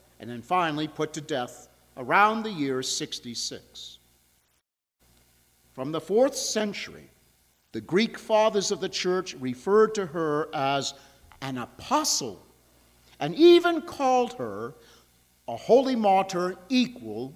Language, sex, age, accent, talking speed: English, male, 50-69, American, 120 wpm